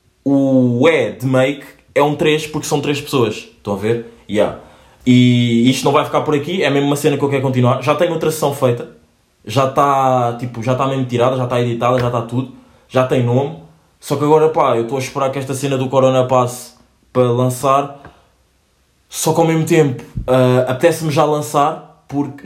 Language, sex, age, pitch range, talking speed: Portuguese, male, 20-39, 130-175 Hz, 205 wpm